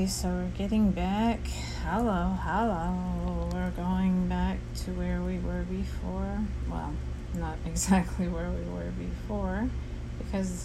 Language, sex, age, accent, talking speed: English, female, 30-49, American, 125 wpm